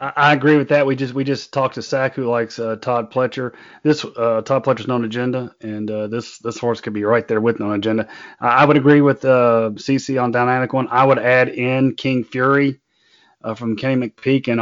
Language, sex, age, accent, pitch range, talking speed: English, male, 30-49, American, 115-135 Hz, 225 wpm